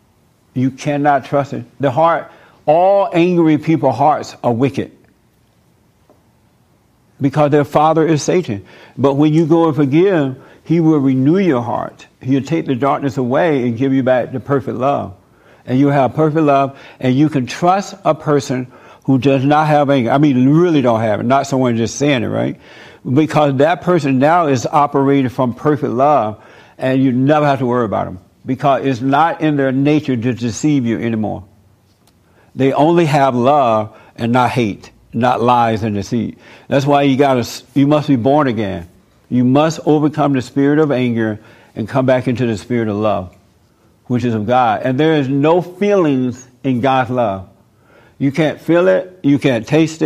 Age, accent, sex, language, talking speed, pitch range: 60-79, American, male, English, 180 wpm, 125-150 Hz